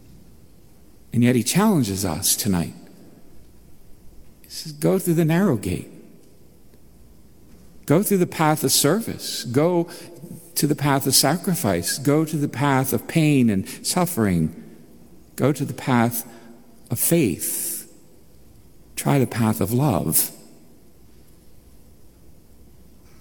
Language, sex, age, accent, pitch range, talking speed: English, male, 60-79, American, 115-145 Hz, 115 wpm